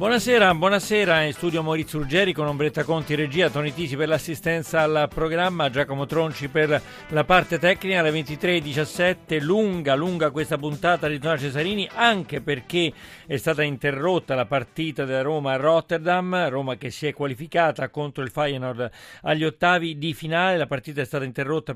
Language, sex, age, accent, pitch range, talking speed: Italian, male, 40-59, native, 135-165 Hz, 160 wpm